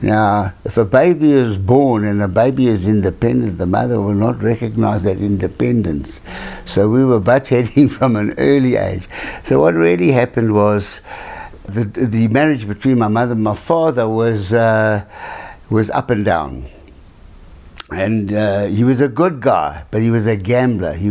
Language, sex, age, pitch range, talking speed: English, male, 60-79, 100-125 Hz, 170 wpm